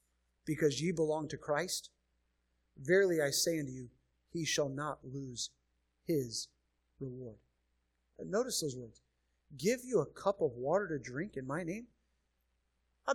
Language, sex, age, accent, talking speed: English, male, 50-69, American, 140 wpm